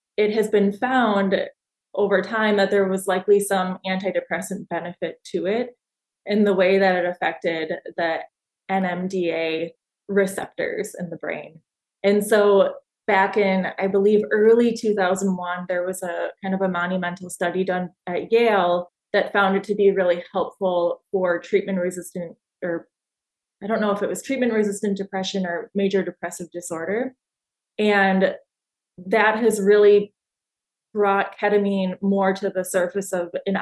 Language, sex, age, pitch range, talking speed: English, female, 20-39, 180-205 Hz, 145 wpm